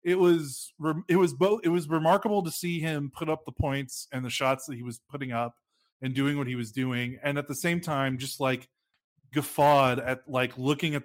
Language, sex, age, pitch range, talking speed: English, male, 20-39, 125-150 Hz, 225 wpm